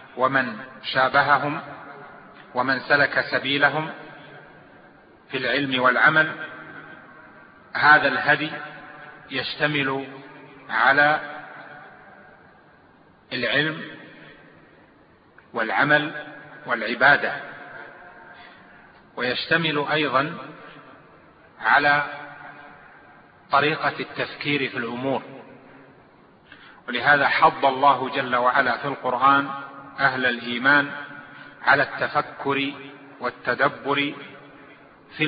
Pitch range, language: 135-150 Hz, Arabic